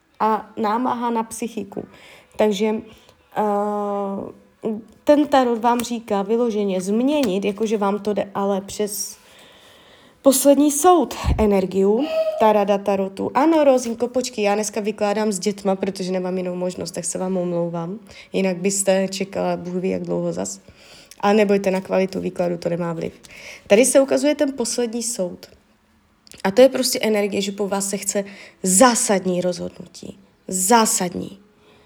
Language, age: Czech, 20-39